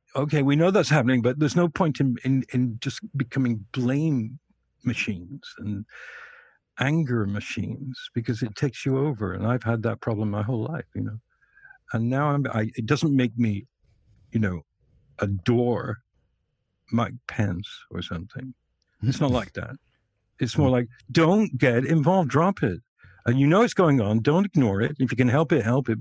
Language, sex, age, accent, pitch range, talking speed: English, male, 60-79, American, 105-135 Hz, 180 wpm